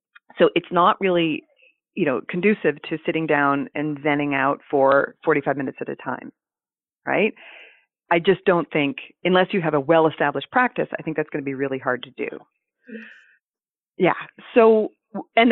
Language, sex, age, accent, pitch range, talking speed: English, female, 40-59, American, 155-200 Hz, 165 wpm